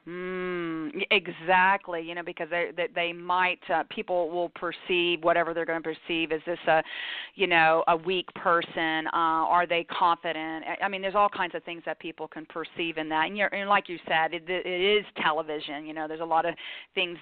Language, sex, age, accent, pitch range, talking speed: English, female, 40-59, American, 170-200 Hz, 205 wpm